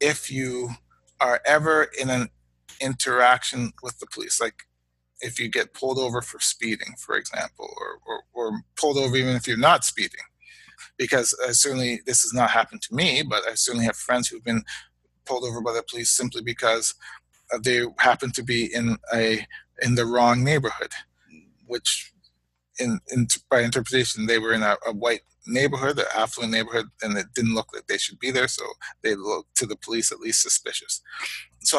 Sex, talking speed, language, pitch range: male, 185 wpm, English, 115-135 Hz